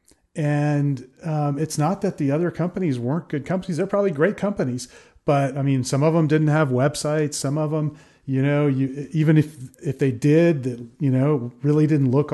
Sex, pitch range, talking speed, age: male, 135-165 Hz, 195 wpm, 30-49